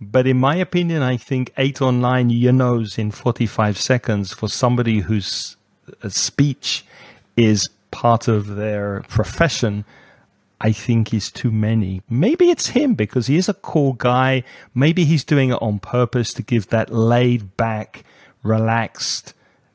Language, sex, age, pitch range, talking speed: English, male, 40-59, 110-145 Hz, 150 wpm